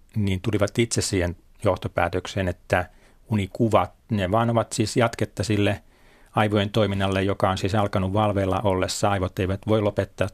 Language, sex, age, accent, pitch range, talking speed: Finnish, male, 30-49, native, 90-105 Hz, 145 wpm